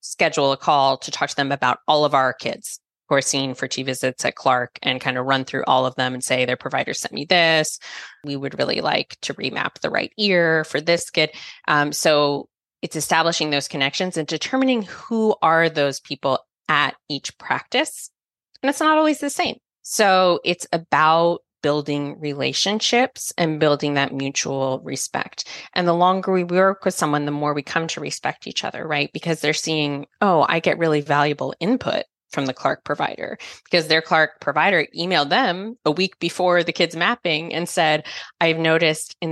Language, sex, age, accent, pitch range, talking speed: English, female, 20-39, American, 140-175 Hz, 190 wpm